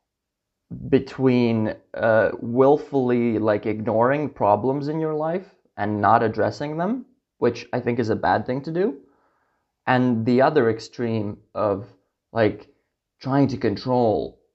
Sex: male